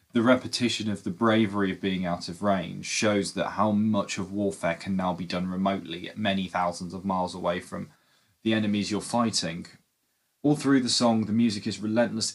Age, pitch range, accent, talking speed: 20-39, 100-120 Hz, British, 195 wpm